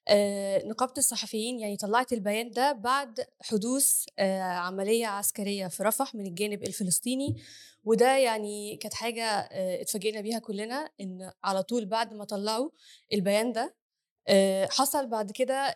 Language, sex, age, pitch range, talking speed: Arabic, female, 10-29, 215-255 Hz, 140 wpm